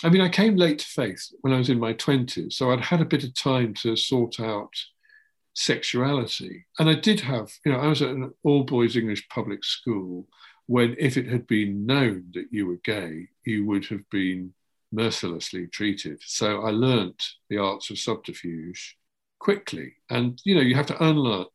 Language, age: English, 50-69